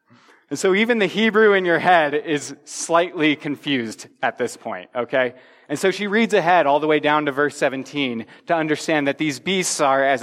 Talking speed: 200 wpm